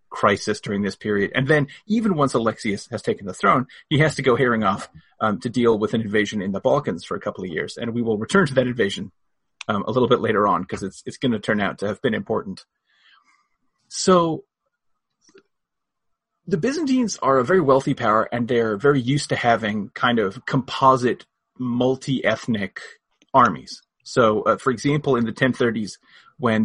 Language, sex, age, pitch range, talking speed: English, male, 30-49, 110-155 Hz, 185 wpm